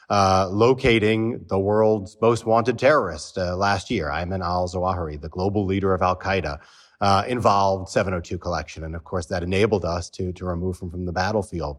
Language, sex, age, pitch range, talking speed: English, male, 30-49, 95-125 Hz, 185 wpm